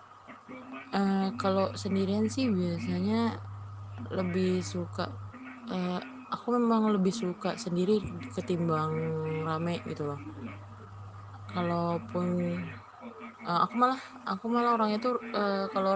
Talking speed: 100 wpm